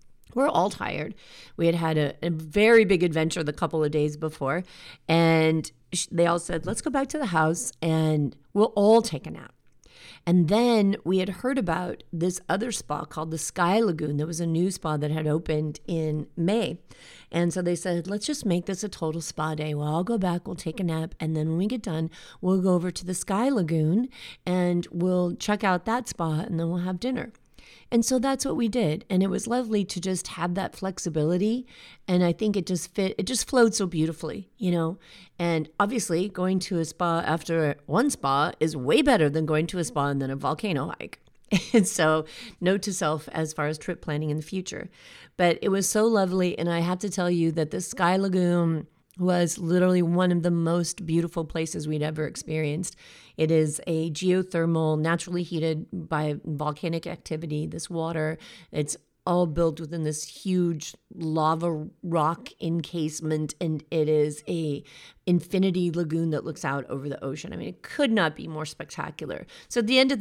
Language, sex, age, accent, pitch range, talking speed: English, female, 40-59, American, 155-190 Hz, 200 wpm